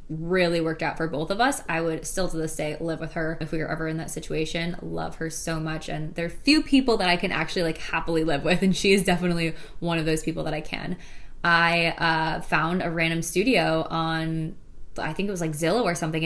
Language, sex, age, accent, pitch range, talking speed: English, female, 20-39, American, 160-185 Hz, 245 wpm